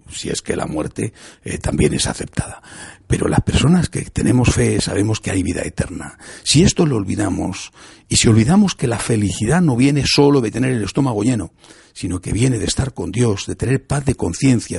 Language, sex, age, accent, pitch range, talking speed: Spanish, male, 60-79, Spanish, 100-140 Hz, 205 wpm